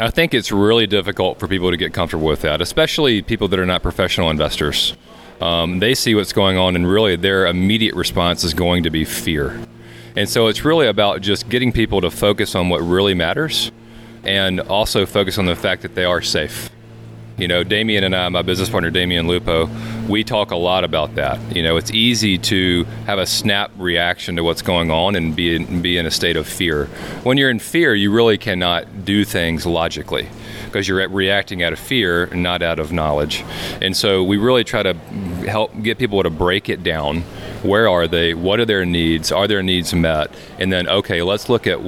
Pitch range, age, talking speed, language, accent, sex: 85-110 Hz, 40-59, 210 wpm, English, American, male